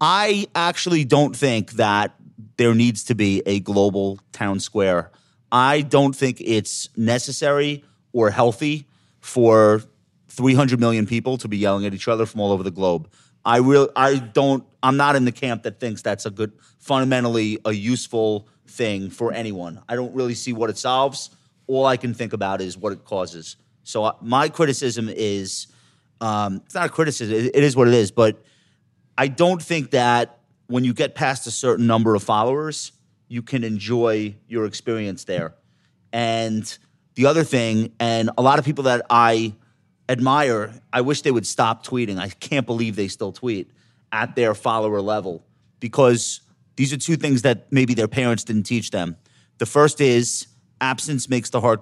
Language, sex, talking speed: English, male, 175 wpm